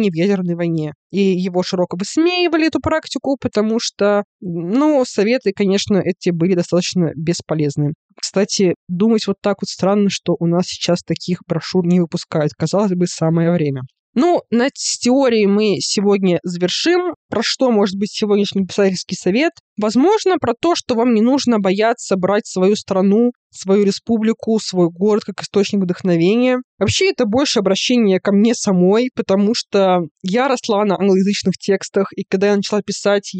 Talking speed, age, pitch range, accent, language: 155 wpm, 20-39, 185-230 Hz, native, Russian